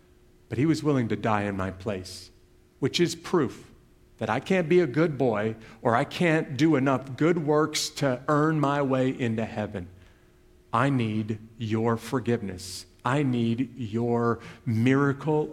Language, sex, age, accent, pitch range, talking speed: English, male, 50-69, American, 110-145 Hz, 155 wpm